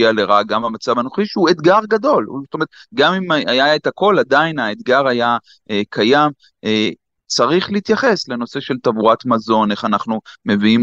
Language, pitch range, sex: Hebrew, 120-160 Hz, male